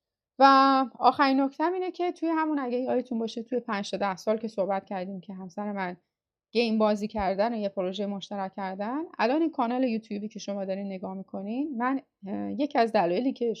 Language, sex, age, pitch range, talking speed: Persian, female, 30-49, 205-265 Hz, 190 wpm